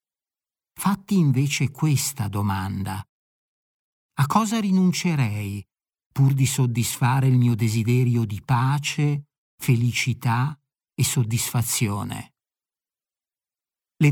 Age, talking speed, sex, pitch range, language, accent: 50-69, 80 wpm, male, 120-145 Hz, Italian, native